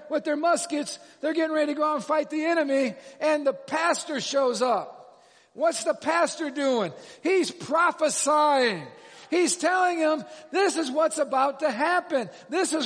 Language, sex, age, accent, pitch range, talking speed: English, male, 50-69, American, 255-320 Hz, 165 wpm